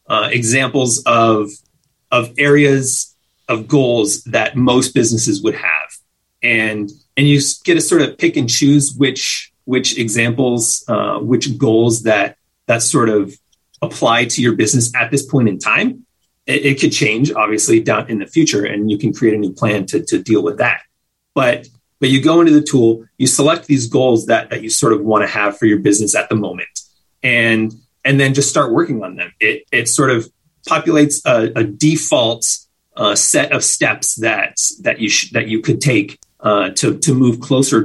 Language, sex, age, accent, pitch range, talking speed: English, male, 30-49, American, 110-145 Hz, 190 wpm